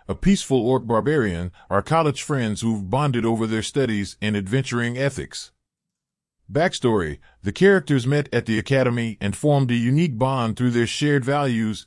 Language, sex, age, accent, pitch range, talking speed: English, male, 40-59, American, 110-145 Hz, 155 wpm